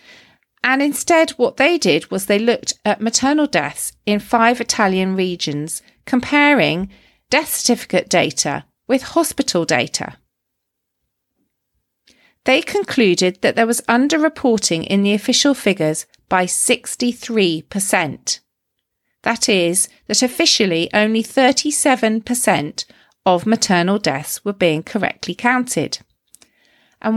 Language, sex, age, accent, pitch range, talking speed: English, female, 40-59, British, 180-245 Hz, 105 wpm